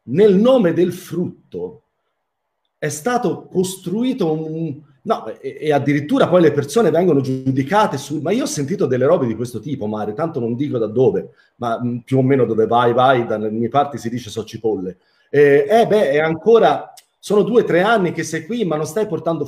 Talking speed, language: 190 wpm, Italian